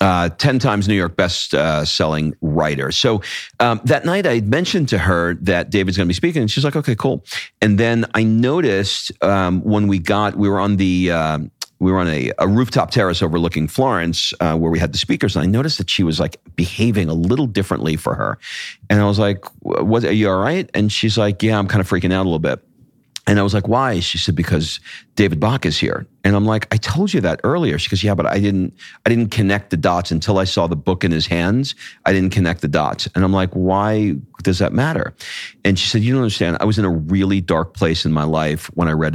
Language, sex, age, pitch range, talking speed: English, male, 40-59, 80-105 Hz, 245 wpm